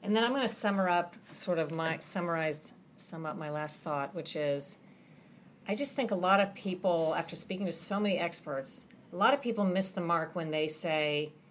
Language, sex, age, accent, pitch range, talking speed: English, female, 40-59, American, 160-205 Hz, 215 wpm